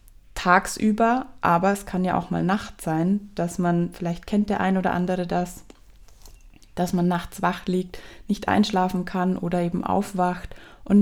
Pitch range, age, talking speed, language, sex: 175-195 Hz, 20-39, 165 wpm, German, female